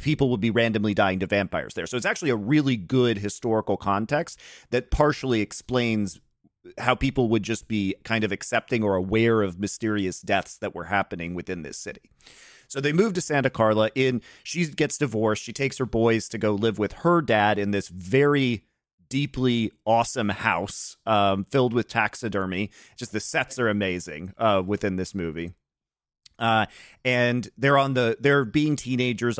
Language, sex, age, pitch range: English, male, 30-49, 105-125 Hz